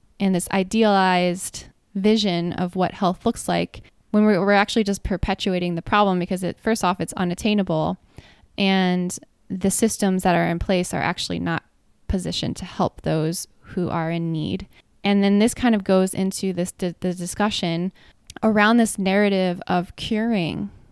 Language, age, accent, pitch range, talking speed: English, 10-29, American, 180-210 Hz, 165 wpm